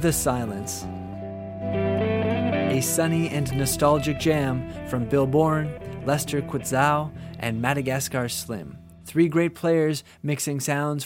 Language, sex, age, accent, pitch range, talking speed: English, male, 20-39, American, 130-155 Hz, 110 wpm